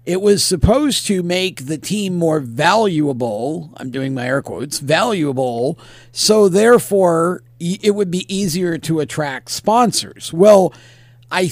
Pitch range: 150-205 Hz